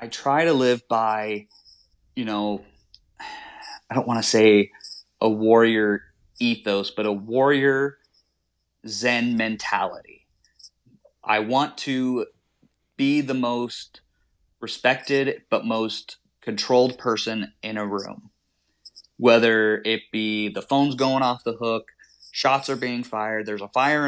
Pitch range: 105-120 Hz